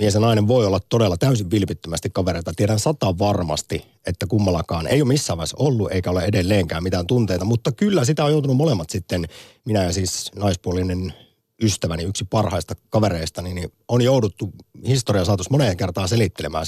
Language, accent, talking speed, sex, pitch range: Finnish, native, 170 wpm, male, 90-125 Hz